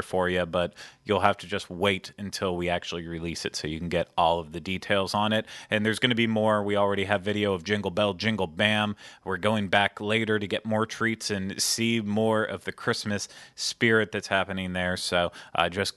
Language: English